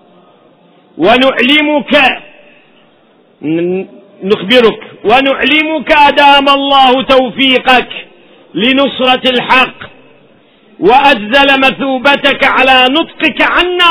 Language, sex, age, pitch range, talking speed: Arabic, male, 50-69, 235-280 Hz, 55 wpm